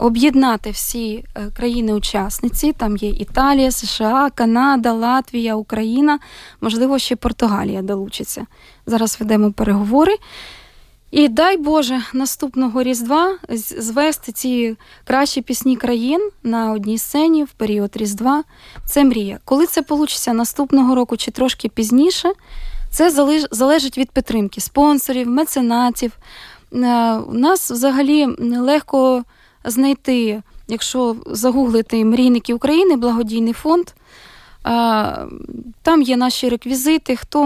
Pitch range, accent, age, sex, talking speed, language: 230-275 Hz, native, 20-39, female, 105 wpm, Ukrainian